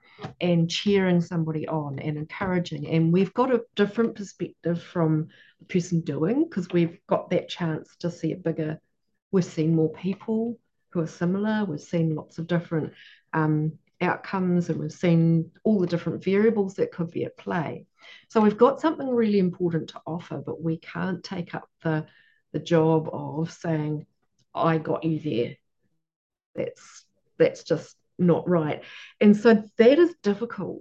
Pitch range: 160-205 Hz